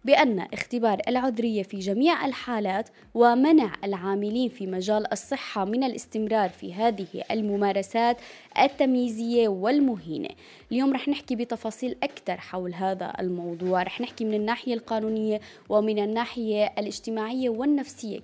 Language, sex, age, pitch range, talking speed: Arabic, female, 20-39, 195-240 Hz, 115 wpm